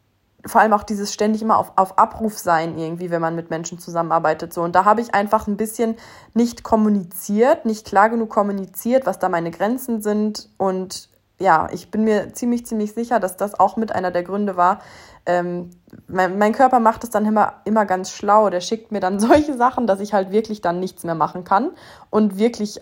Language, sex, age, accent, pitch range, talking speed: German, female, 20-39, German, 180-225 Hz, 205 wpm